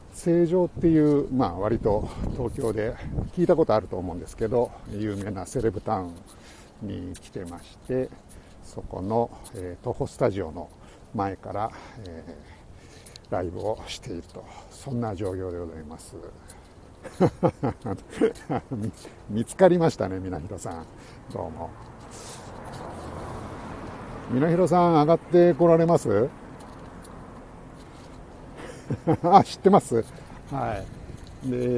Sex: male